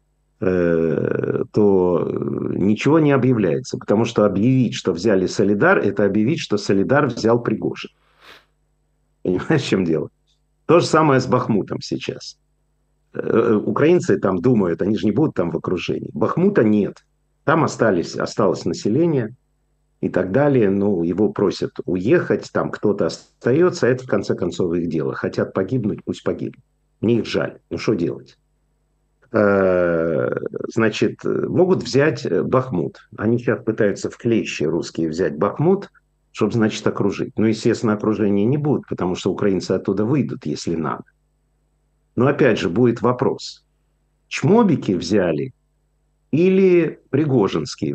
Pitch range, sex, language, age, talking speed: 100-130 Hz, male, Russian, 50-69, 130 wpm